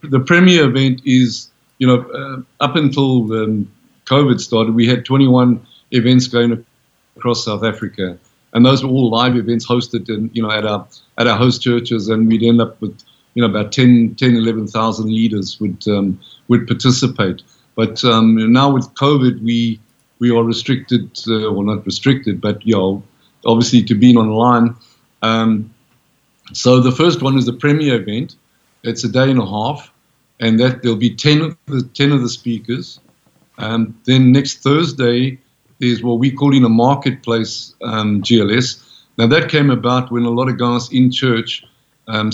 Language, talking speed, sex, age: English, 175 wpm, male, 50-69